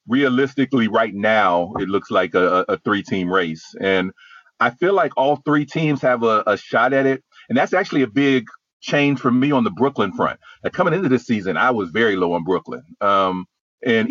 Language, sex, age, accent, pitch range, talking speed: English, male, 40-59, American, 110-135 Hz, 200 wpm